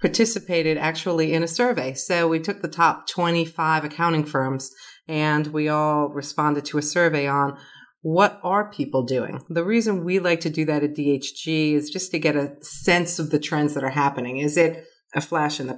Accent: American